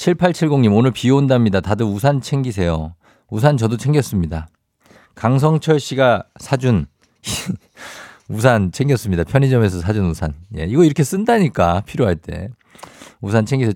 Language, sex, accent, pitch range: Korean, male, native, 90-130 Hz